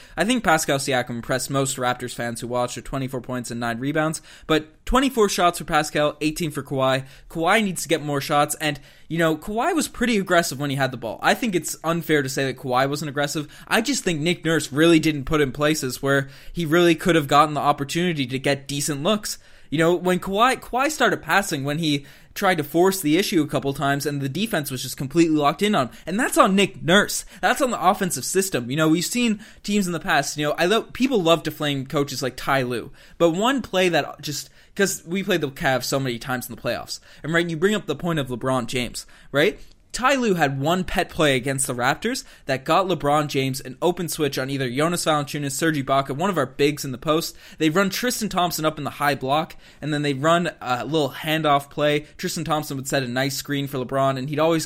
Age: 20-39